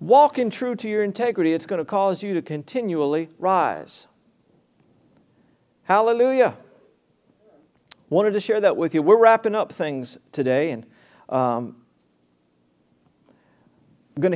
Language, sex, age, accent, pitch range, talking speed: English, male, 50-69, American, 140-185 Hz, 120 wpm